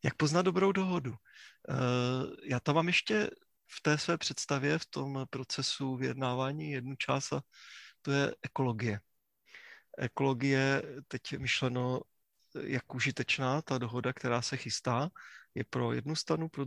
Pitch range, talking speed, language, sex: 130-155 Hz, 135 wpm, Czech, male